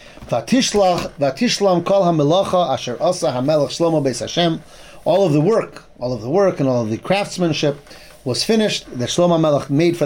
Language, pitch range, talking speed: English, 140-185 Hz, 120 wpm